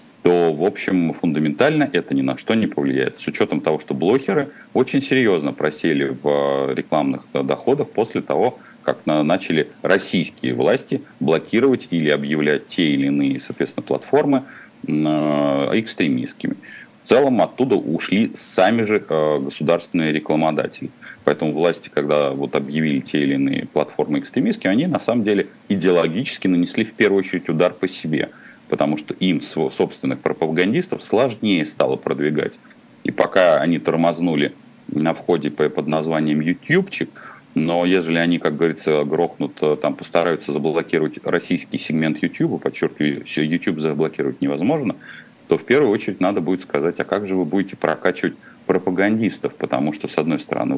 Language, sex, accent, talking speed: Russian, male, native, 140 wpm